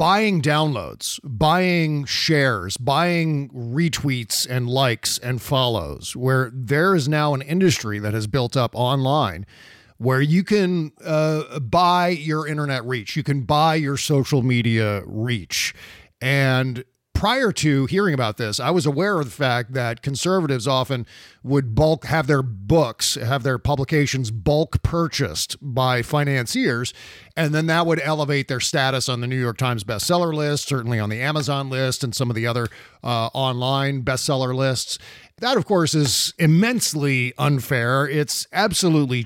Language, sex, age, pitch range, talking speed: English, male, 40-59, 125-155 Hz, 150 wpm